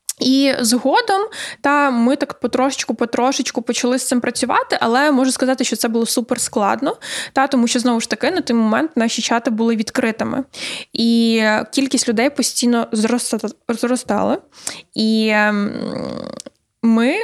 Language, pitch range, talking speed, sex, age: Ukrainian, 230-275 Hz, 130 wpm, female, 10-29